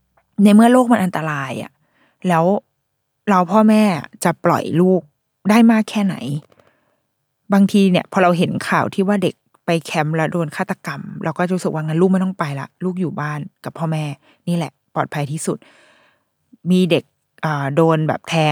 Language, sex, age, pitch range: Thai, female, 20-39, 155-205 Hz